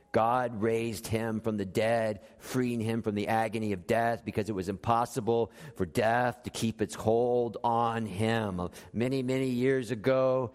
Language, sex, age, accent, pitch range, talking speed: English, male, 40-59, American, 125-175 Hz, 165 wpm